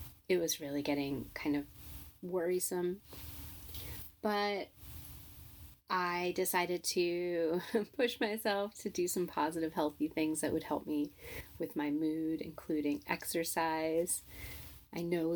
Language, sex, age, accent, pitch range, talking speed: English, female, 30-49, American, 145-210 Hz, 115 wpm